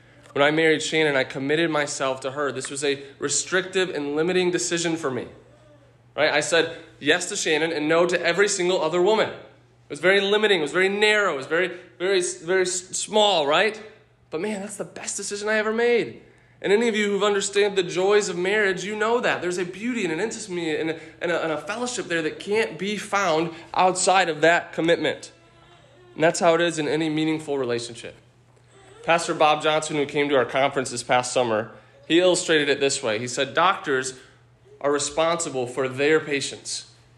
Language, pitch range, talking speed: English, 140-185 Hz, 195 wpm